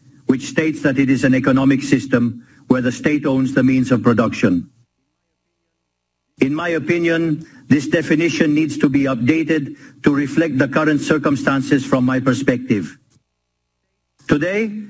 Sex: male